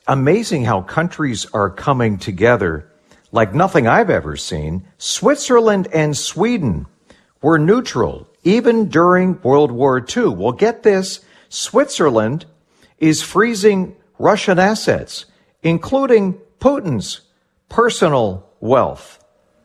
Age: 50-69